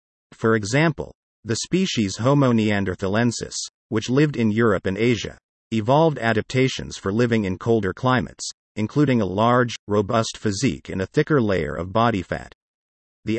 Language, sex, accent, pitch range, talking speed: English, male, American, 95-130 Hz, 145 wpm